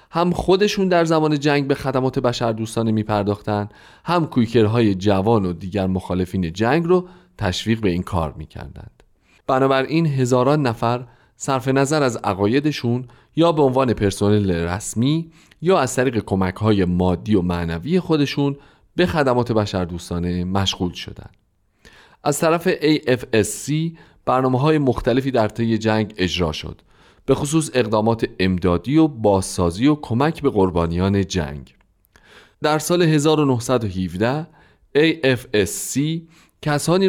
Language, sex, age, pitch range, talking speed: Persian, male, 30-49, 95-145 Hz, 120 wpm